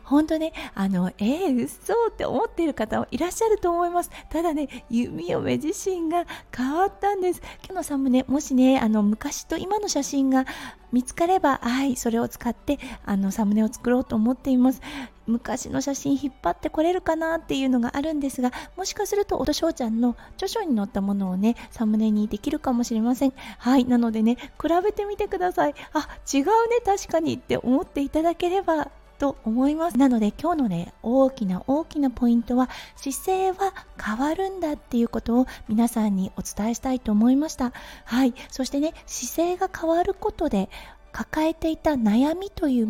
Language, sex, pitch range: Japanese, female, 230-325 Hz